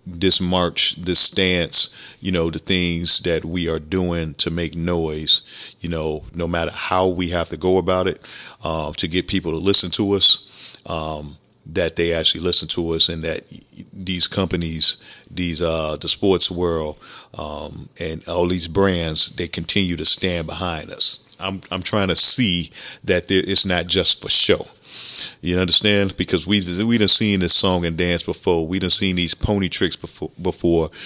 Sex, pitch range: male, 85-95 Hz